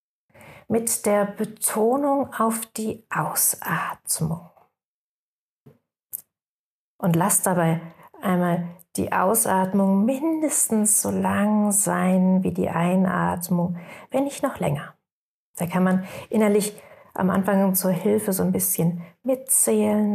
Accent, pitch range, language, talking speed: German, 170-205 Hz, German, 105 wpm